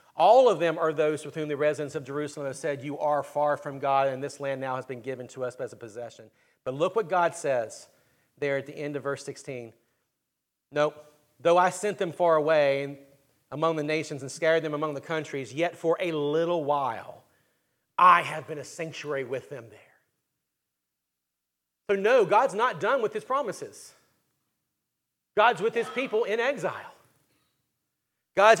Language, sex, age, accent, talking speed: English, male, 40-59, American, 180 wpm